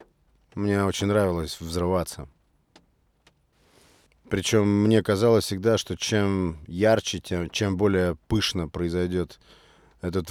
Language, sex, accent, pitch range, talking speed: Russian, male, native, 85-100 Hz, 100 wpm